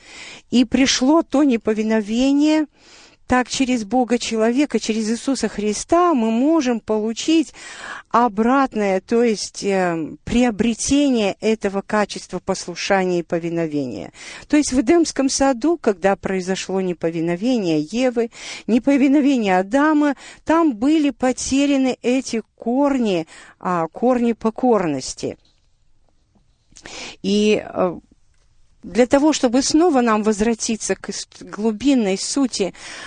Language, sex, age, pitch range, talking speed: Russian, female, 50-69, 195-265 Hz, 100 wpm